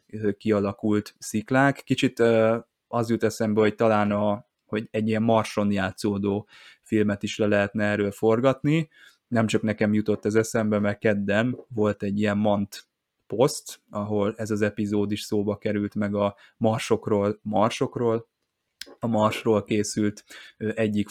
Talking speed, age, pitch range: 135 wpm, 20-39, 105-115 Hz